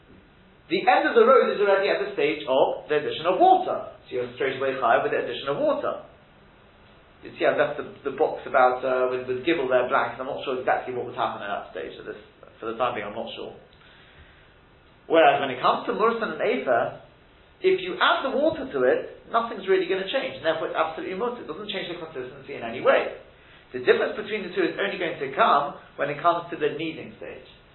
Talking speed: 235 wpm